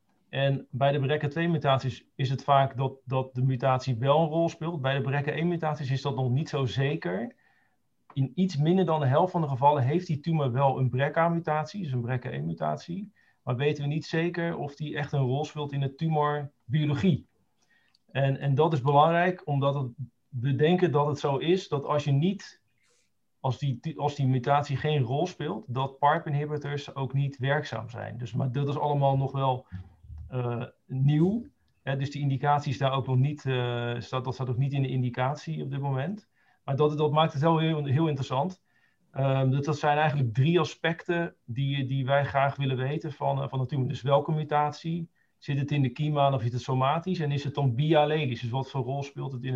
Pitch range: 130-155 Hz